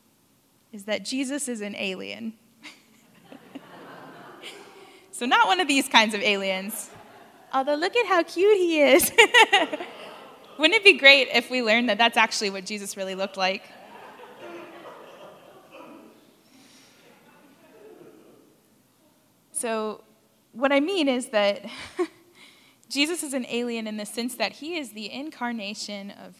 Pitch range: 205-270 Hz